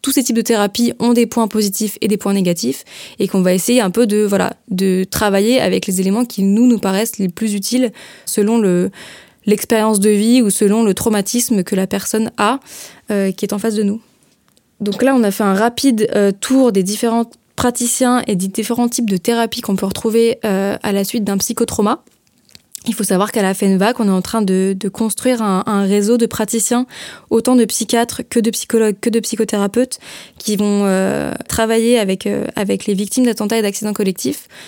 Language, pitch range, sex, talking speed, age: French, 200-235 Hz, female, 210 wpm, 20-39